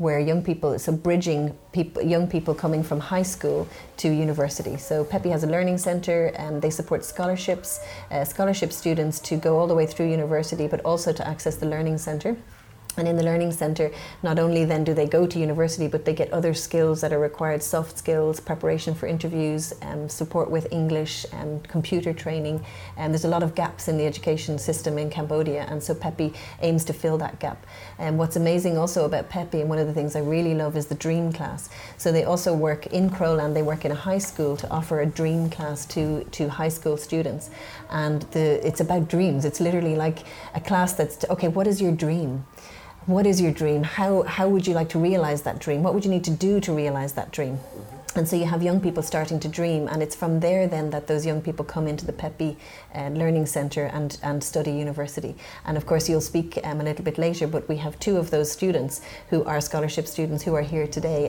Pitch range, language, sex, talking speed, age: 150-165 Hz, English, female, 225 wpm, 30-49